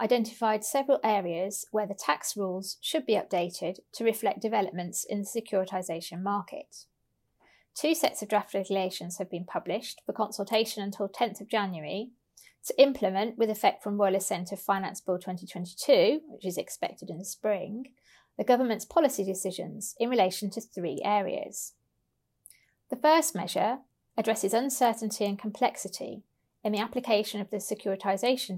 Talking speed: 145 wpm